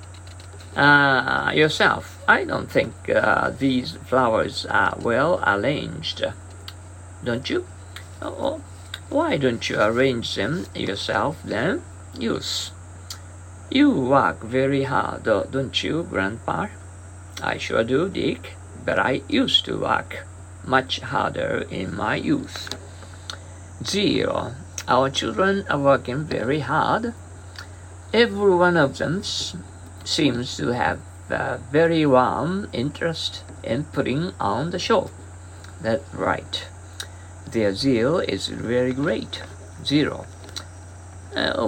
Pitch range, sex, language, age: 90-125 Hz, male, Japanese, 50-69